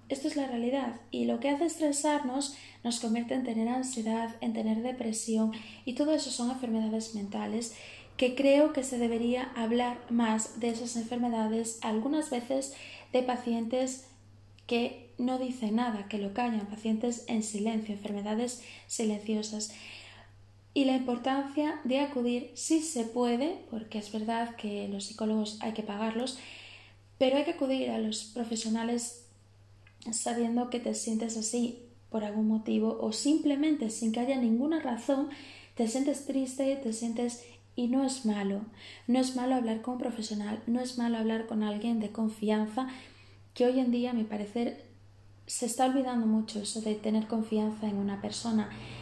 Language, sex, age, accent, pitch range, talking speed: Spanish, female, 20-39, Spanish, 215-255 Hz, 160 wpm